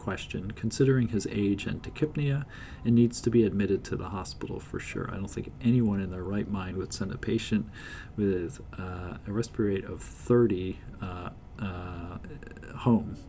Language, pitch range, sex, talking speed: English, 95-120 Hz, male, 170 wpm